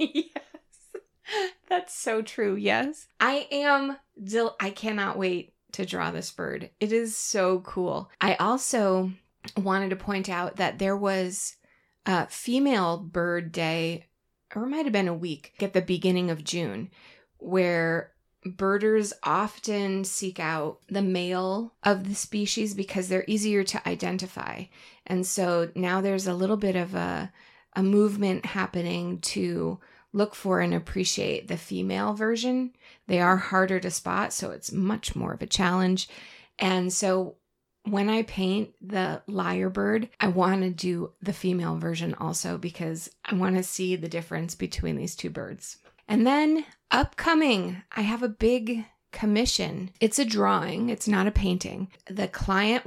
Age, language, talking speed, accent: 20-39, English, 150 wpm, American